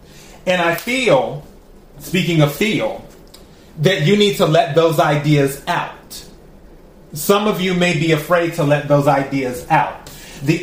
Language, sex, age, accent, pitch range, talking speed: English, male, 30-49, American, 160-195 Hz, 145 wpm